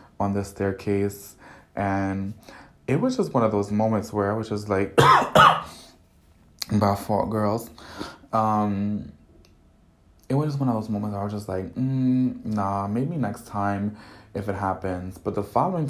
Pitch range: 95-110 Hz